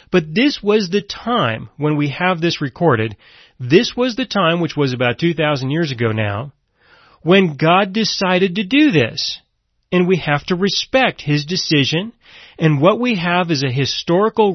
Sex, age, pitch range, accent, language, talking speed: male, 30-49, 145-195 Hz, American, English, 170 wpm